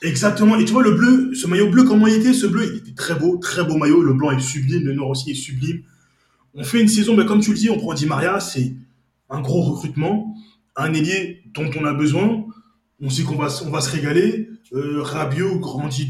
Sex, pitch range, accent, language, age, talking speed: male, 145-220 Hz, French, French, 20-39, 240 wpm